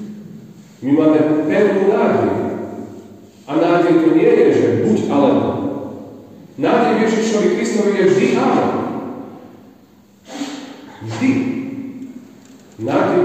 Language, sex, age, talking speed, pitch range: Slovak, male, 40-59, 90 wpm, 105-155 Hz